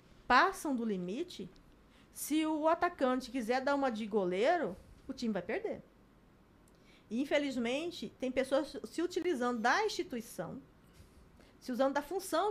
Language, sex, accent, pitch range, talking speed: Portuguese, female, Brazilian, 210-260 Hz, 125 wpm